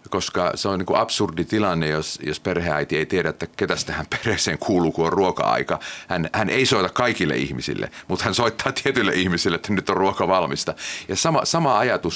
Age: 30-49